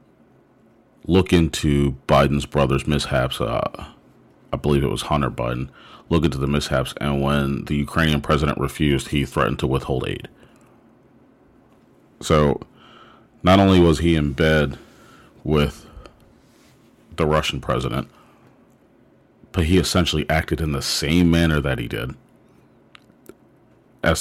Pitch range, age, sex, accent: 70-85 Hz, 40-59, male, American